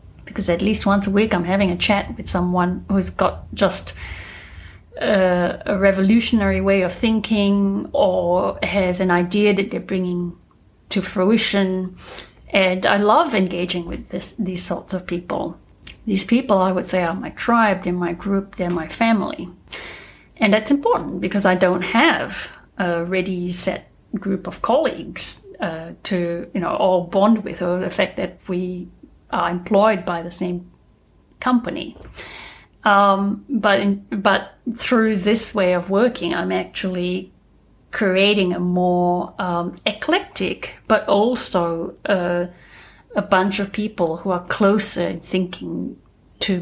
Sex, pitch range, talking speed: female, 180-205 Hz, 145 wpm